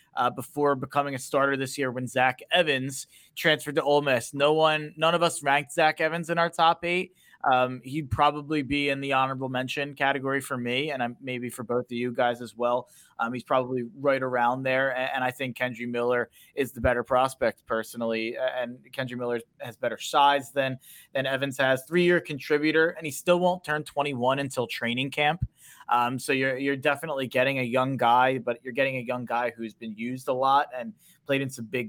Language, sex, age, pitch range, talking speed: English, male, 20-39, 125-150 Hz, 205 wpm